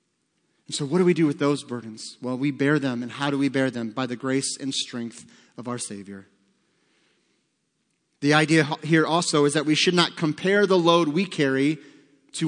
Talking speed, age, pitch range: 200 wpm, 30-49, 135-170 Hz